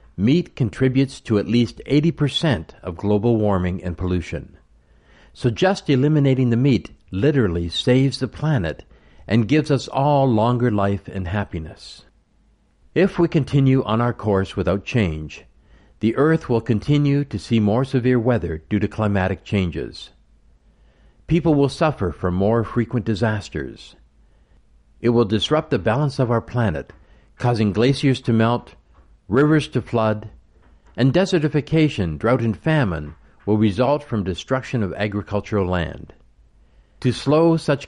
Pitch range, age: 90-135 Hz, 60-79